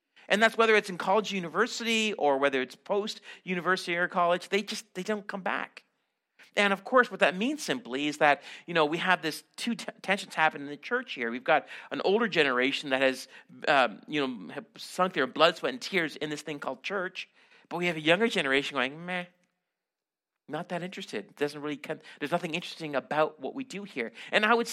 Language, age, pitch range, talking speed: English, 50-69, 145-195 Hz, 215 wpm